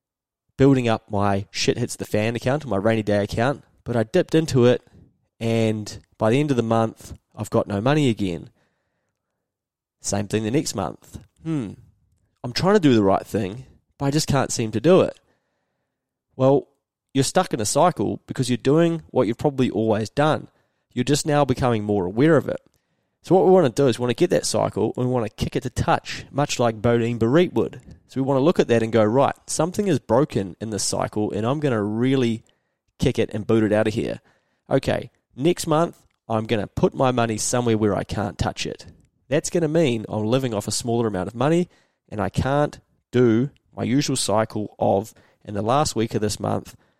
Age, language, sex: 20-39, English, male